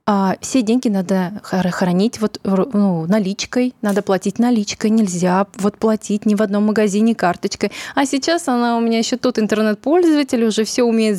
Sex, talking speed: female, 160 wpm